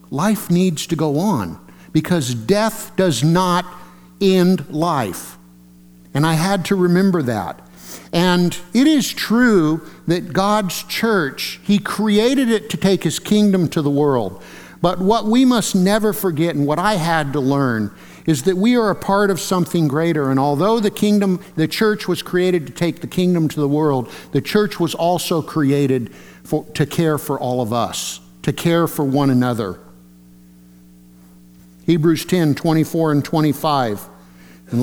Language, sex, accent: English, male, American